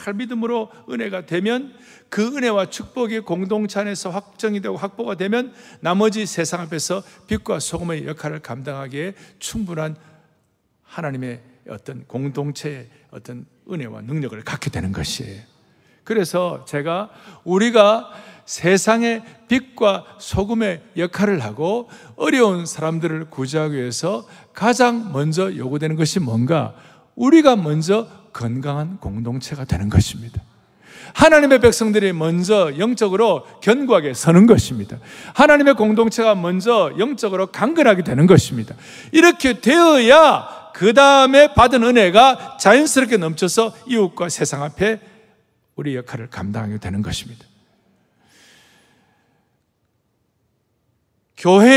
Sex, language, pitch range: male, Korean, 150-225 Hz